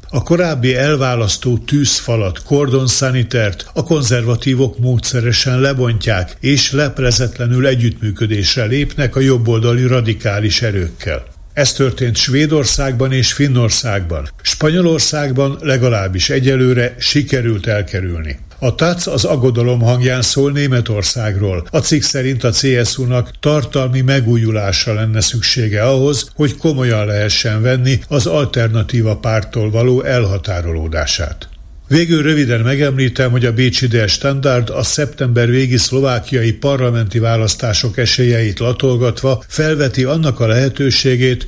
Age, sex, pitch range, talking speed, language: 60-79, male, 110-135 Hz, 105 wpm, Hungarian